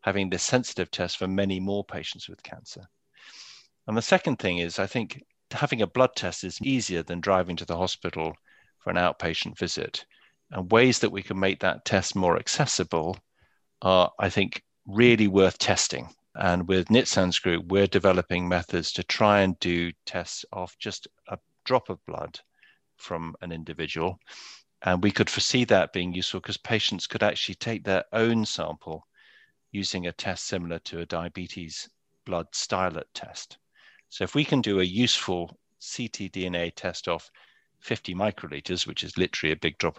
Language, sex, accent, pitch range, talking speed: English, male, British, 85-105 Hz, 170 wpm